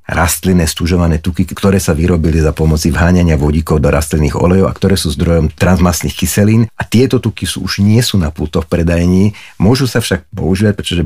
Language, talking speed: Slovak, 185 wpm